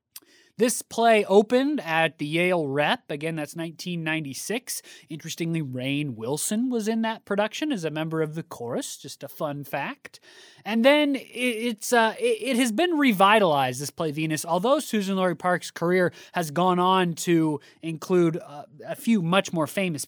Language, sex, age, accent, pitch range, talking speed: English, male, 20-39, American, 155-205 Hz, 160 wpm